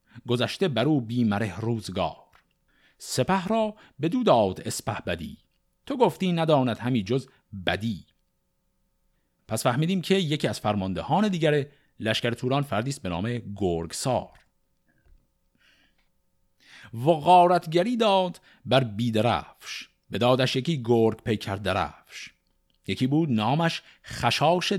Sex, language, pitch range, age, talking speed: male, Persian, 110-155 Hz, 50-69, 105 wpm